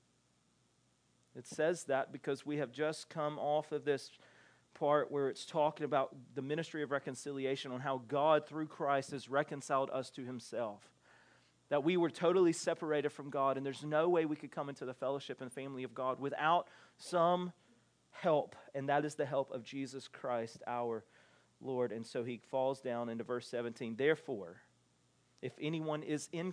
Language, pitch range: English, 135-195 Hz